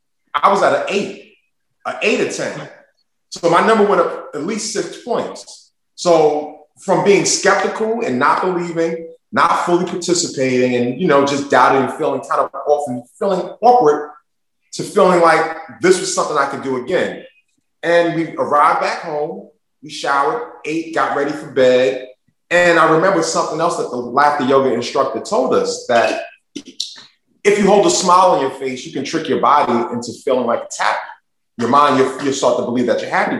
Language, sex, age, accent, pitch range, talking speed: English, male, 30-49, American, 130-185 Hz, 185 wpm